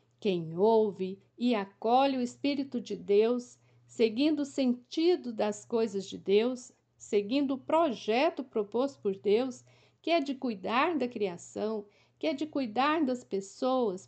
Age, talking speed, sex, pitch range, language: 50-69, 140 wpm, female, 200-270 Hz, Portuguese